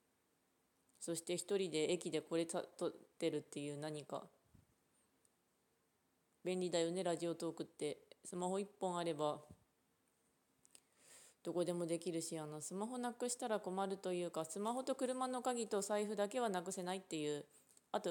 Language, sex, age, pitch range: Japanese, female, 20-39, 165-210 Hz